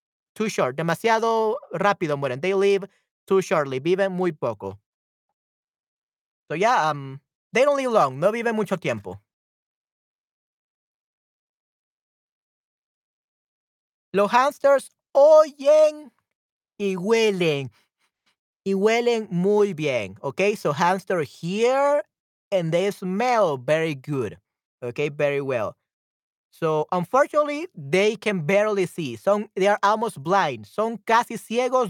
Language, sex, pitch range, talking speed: Spanish, male, 155-225 Hz, 110 wpm